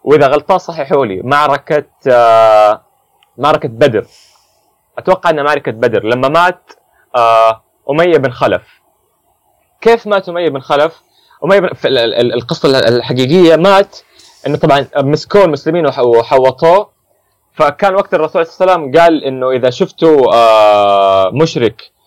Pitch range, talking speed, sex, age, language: 115-170 Hz, 125 wpm, male, 20-39, Arabic